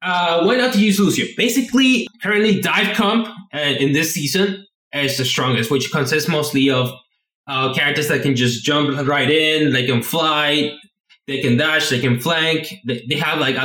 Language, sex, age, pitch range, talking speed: English, male, 20-39, 140-185 Hz, 185 wpm